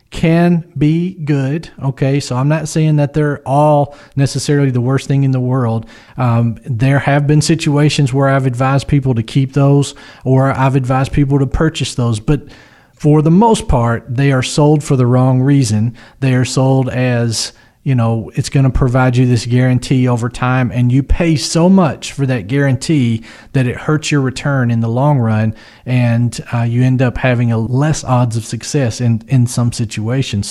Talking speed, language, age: 185 wpm, English, 40-59